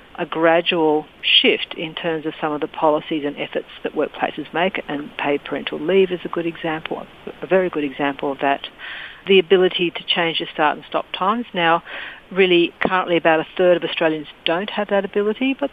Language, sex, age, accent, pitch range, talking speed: English, female, 50-69, Australian, 155-190 Hz, 195 wpm